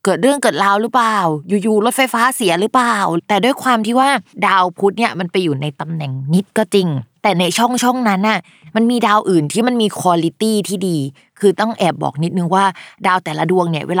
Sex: female